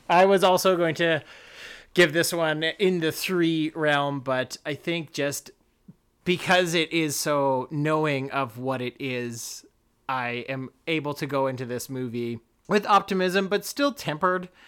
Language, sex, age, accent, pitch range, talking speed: English, male, 30-49, American, 130-165 Hz, 155 wpm